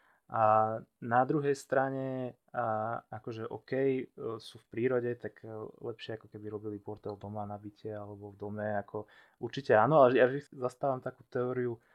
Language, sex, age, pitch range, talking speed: Slovak, male, 20-39, 110-125 Hz, 150 wpm